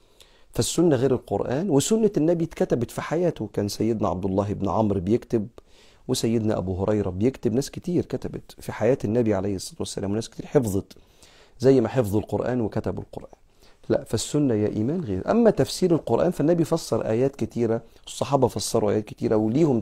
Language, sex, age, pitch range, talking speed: Arabic, male, 40-59, 110-135 Hz, 165 wpm